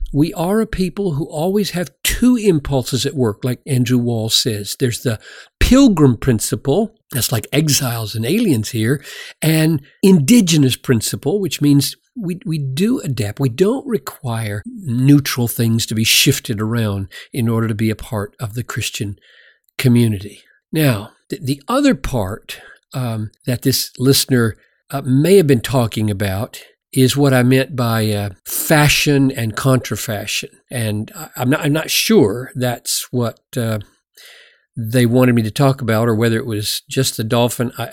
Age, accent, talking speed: 50-69, American, 155 wpm